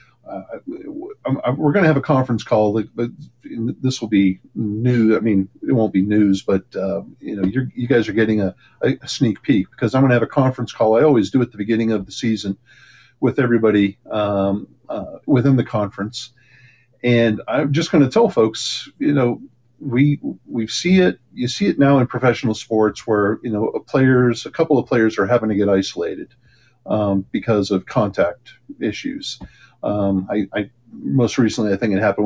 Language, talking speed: English, 190 wpm